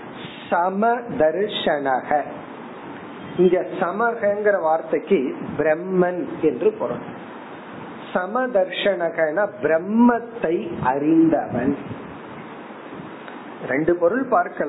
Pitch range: 160-215 Hz